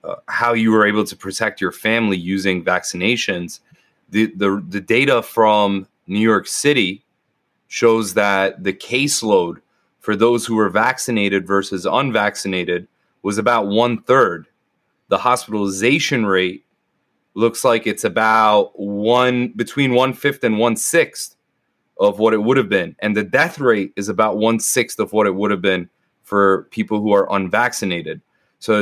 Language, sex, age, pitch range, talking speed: English, male, 30-49, 100-120 Hz, 145 wpm